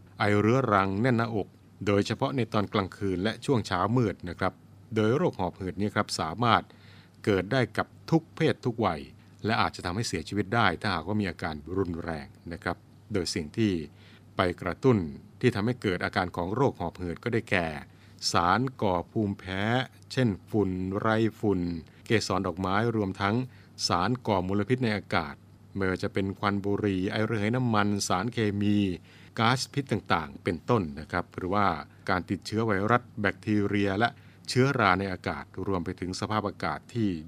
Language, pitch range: Thai, 95-115 Hz